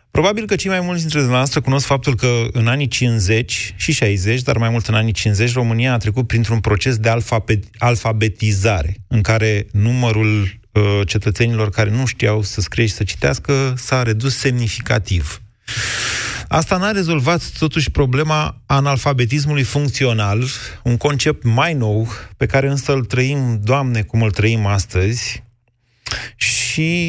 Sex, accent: male, native